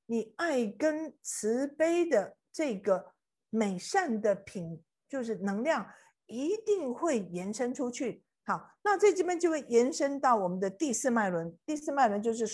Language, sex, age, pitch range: Chinese, female, 50-69, 205-310 Hz